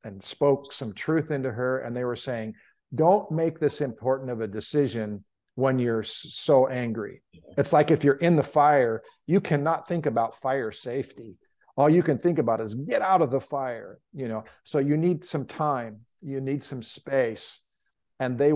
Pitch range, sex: 115-145 Hz, male